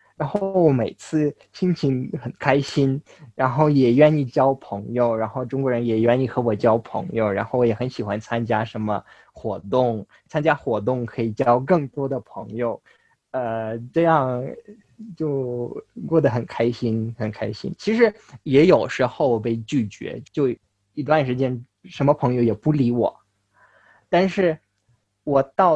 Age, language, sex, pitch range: 20-39, English, male, 115-150 Hz